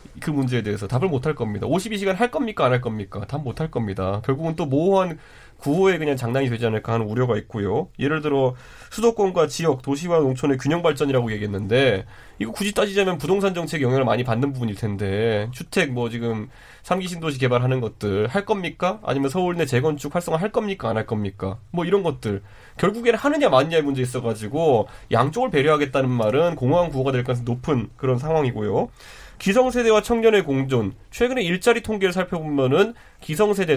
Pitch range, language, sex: 120-175 Hz, Korean, male